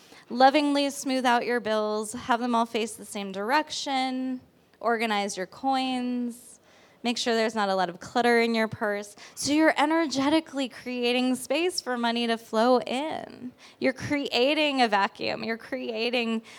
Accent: American